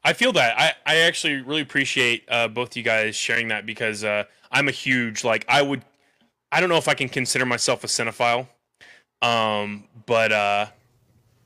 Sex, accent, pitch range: male, American, 115-145 Hz